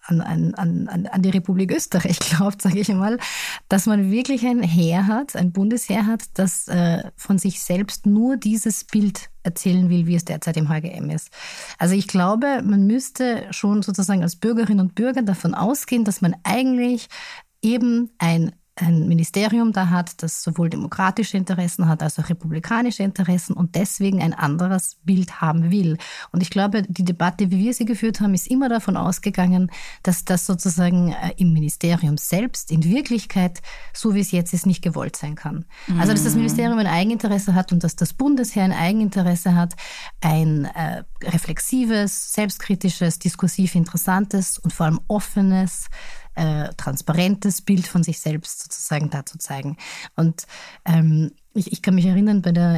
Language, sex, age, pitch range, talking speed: German, female, 30-49, 170-205 Hz, 165 wpm